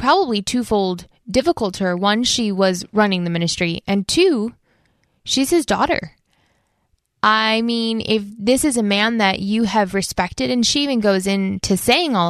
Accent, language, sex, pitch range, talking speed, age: American, English, female, 180-215 Hz, 165 wpm, 10-29